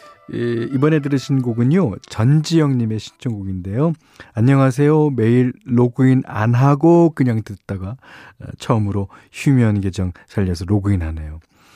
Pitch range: 100-140 Hz